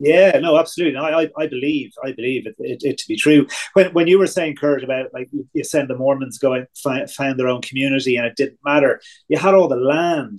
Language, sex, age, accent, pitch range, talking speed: English, male, 30-49, British, 130-175 Hz, 250 wpm